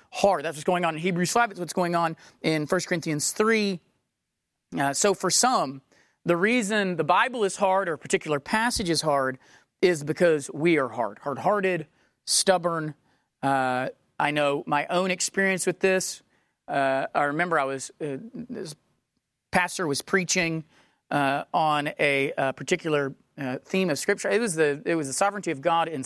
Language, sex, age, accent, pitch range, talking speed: English, male, 30-49, American, 155-210 Hz, 175 wpm